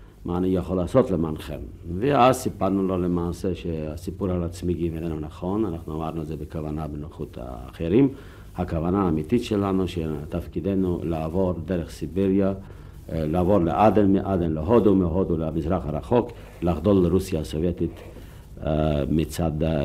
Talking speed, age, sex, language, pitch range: 120 wpm, 60-79, male, Hebrew, 85-110 Hz